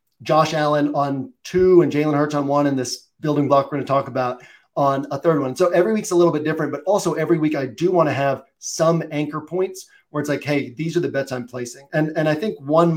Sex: male